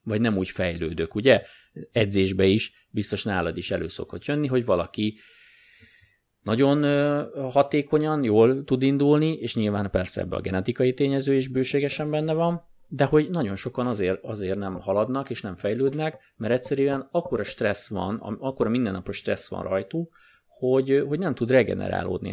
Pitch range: 105-135 Hz